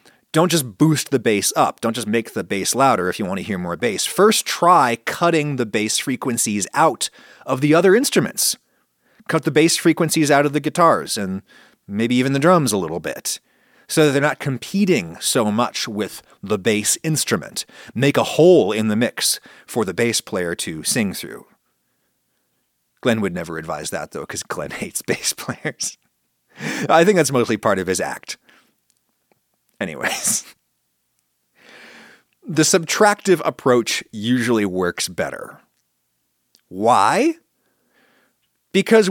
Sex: male